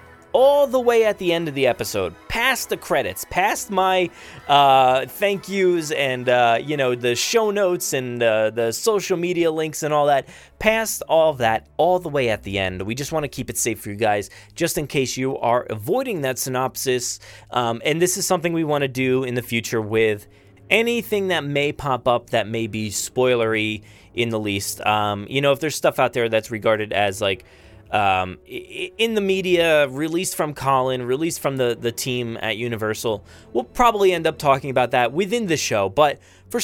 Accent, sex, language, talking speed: American, male, English, 205 wpm